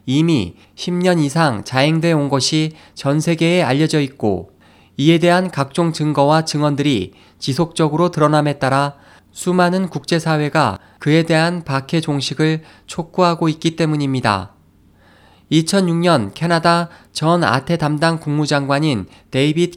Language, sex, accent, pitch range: Korean, male, native, 130-165 Hz